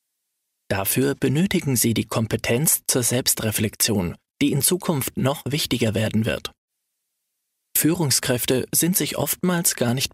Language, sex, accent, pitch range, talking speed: German, male, German, 115-145 Hz, 120 wpm